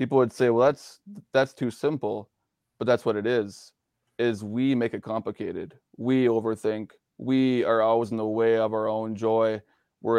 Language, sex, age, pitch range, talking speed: English, male, 20-39, 110-125 Hz, 185 wpm